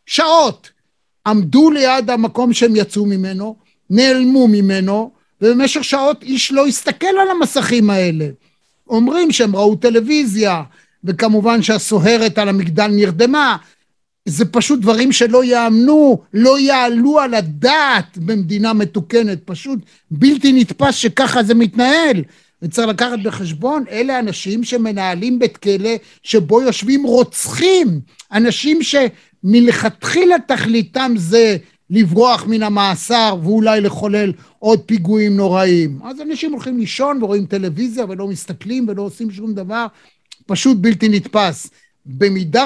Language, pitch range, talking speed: Hebrew, 200-250 Hz, 115 wpm